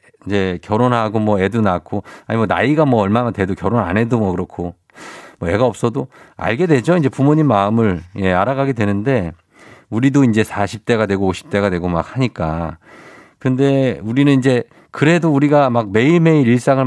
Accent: native